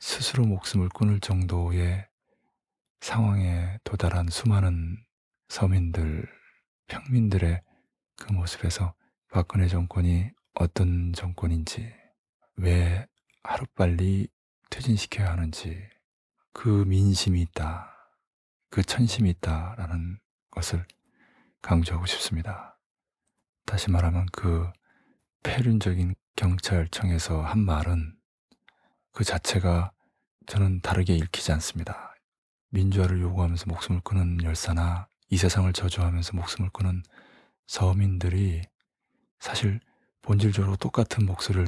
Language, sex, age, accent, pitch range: Korean, male, 20-39, native, 85-100 Hz